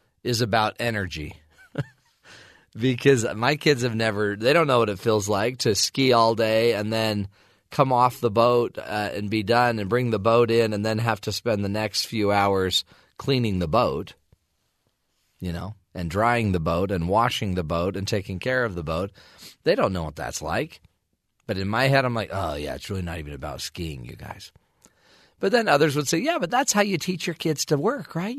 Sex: male